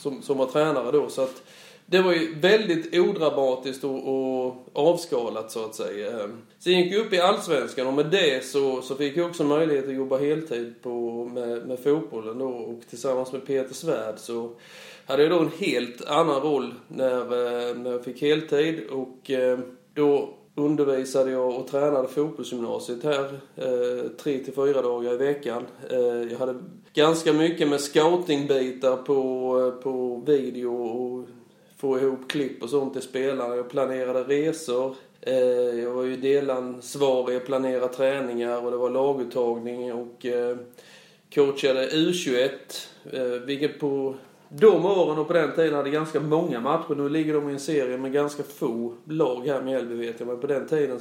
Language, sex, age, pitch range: Swedish, male, 30-49, 125-150 Hz